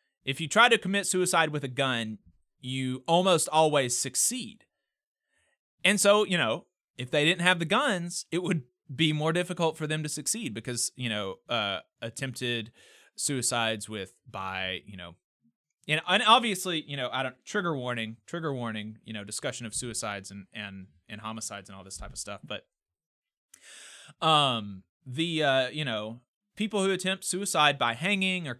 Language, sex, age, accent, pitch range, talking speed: English, male, 20-39, American, 110-160 Hz, 170 wpm